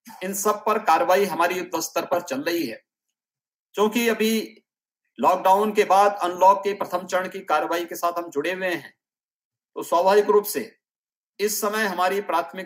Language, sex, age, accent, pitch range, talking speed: Hindi, male, 50-69, native, 170-195 Hz, 110 wpm